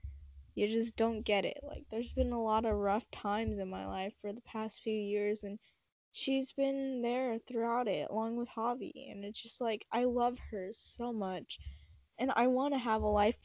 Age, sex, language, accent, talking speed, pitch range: 10-29, female, English, American, 205 wpm, 205-235 Hz